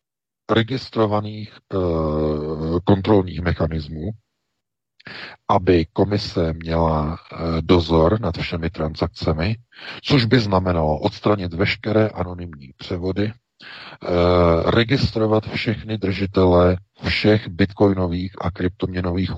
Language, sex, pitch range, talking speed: Czech, male, 85-95 Hz, 85 wpm